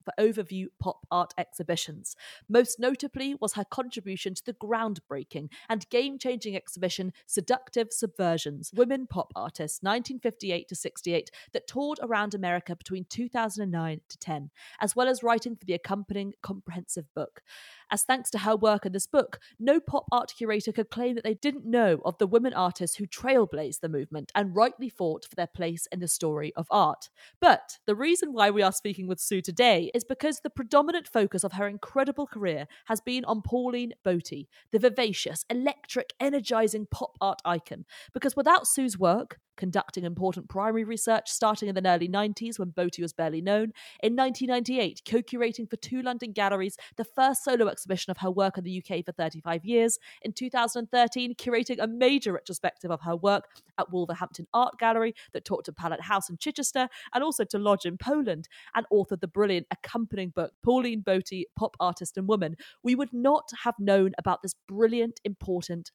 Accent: British